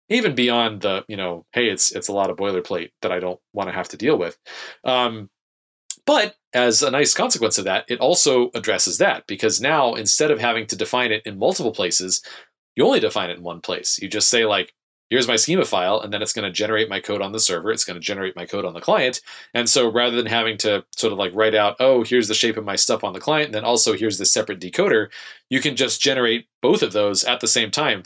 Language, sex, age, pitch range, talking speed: English, male, 30-49, 100-125 Hz, 250 wpm